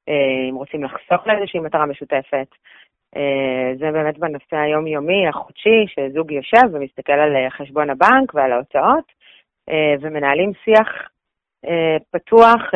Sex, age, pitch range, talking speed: female, 30-49, 140-160 Hz, 105 wpm